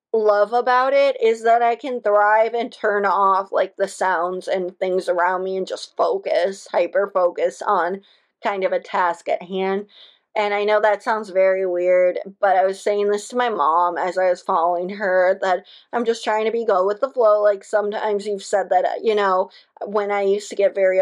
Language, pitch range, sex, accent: English, 195-235 Hz, female, American